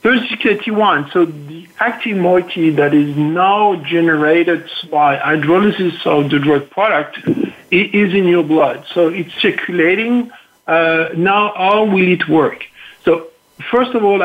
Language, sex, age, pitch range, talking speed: English, male, 50-69, 155-200 Hz, 145 wpm